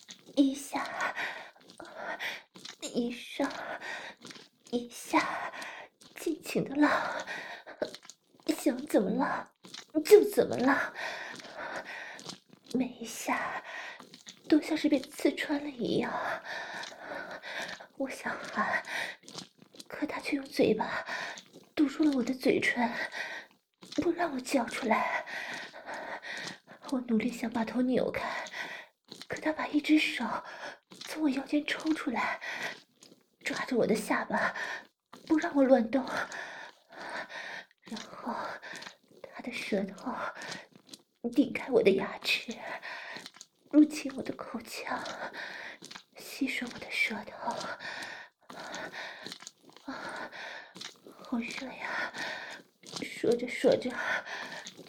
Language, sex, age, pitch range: Chinese, female, 20-39, 250-310 Hz